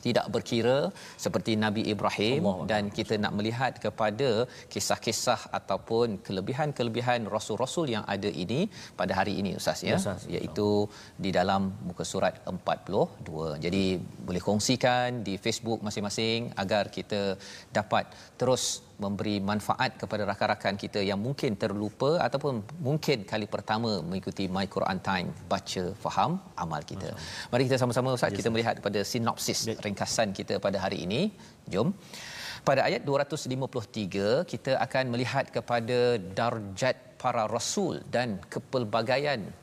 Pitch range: 105-125 Hz